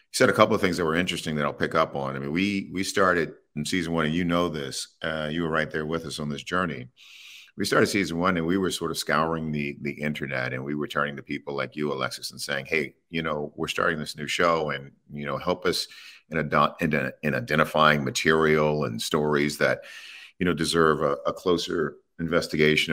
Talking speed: 235 wpm